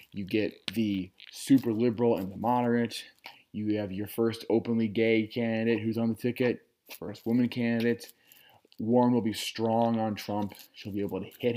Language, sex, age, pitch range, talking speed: English, male, 20-39, 105-120 Hz, 170 wpm